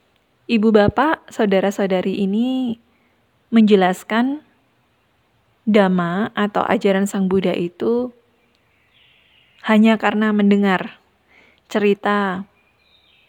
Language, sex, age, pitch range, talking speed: Indonesian, female, 20-39, 195-230 Hz, 70 wpm